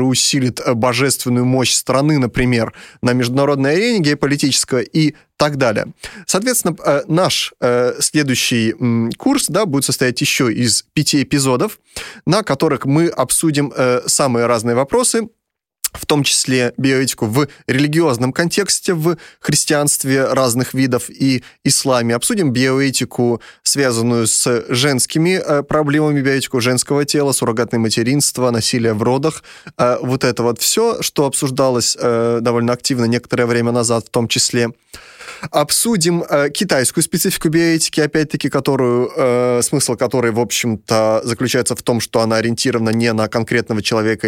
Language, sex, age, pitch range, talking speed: Russian, male, 20-39, 120-145 Hz, 125 wpm